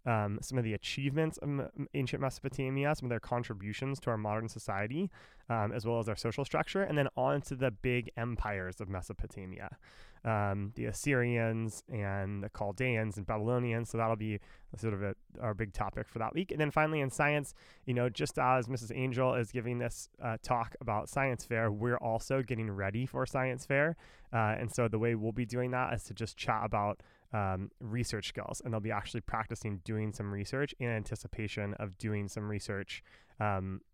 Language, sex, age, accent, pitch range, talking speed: English, male, 20-39, American, 105-135 Hz, 195 wpm